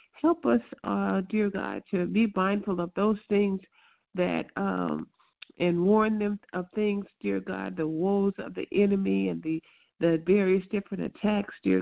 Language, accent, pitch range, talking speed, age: English, American, 175-210 Hz, 160 wpm, 50-69